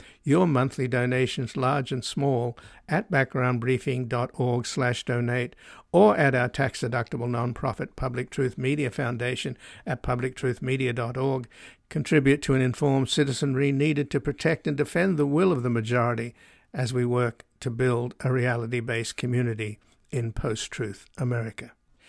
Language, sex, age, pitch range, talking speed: English, male, 60-79, 125-140 Hz, 130 wpm